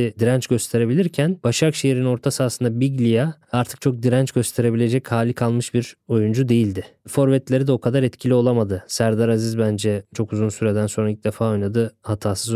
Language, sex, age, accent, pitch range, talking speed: Turkish, male, 20-39, native, 115-145 Hz, 155 wpm